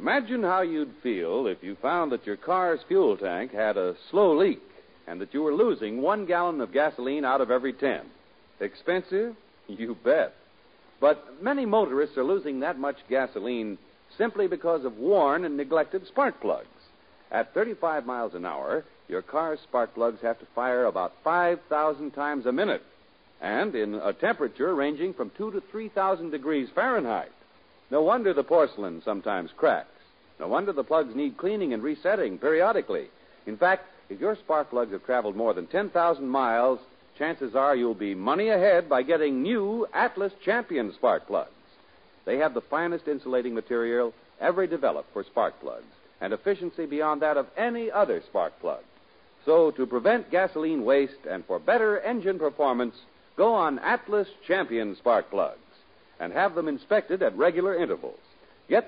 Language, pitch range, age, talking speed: English, 135-225 Hz, 60-79, 165 wpm